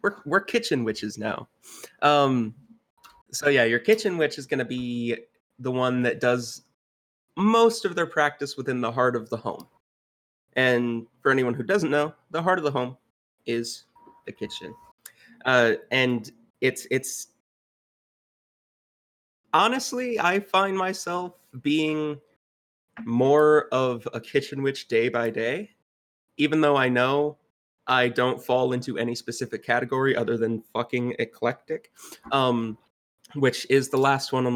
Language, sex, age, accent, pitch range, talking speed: English, male, 30-49, American, 120-150 Hz, 140 wpm